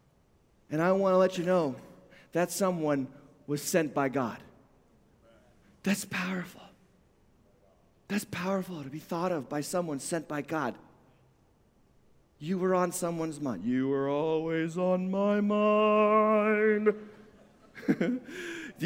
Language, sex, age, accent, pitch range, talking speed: English, male, 40-59, American, 180-235 Hz, 120 wpm